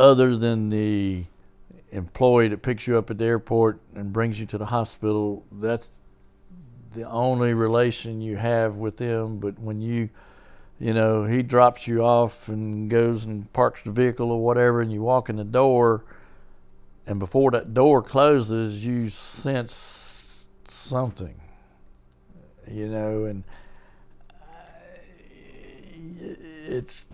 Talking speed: 135 wpm